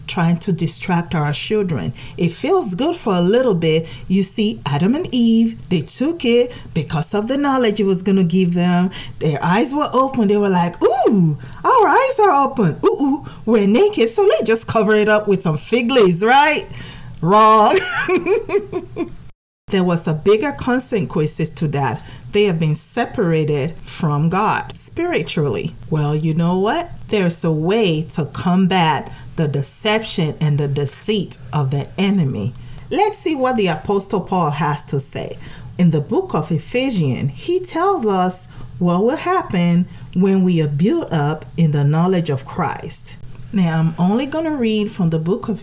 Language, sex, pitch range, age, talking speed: English, female, 155-225 Hz, 40-59, 170 wpm